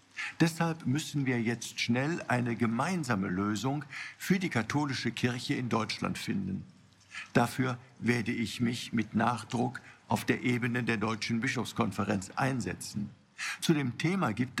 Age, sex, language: 50-69, male, German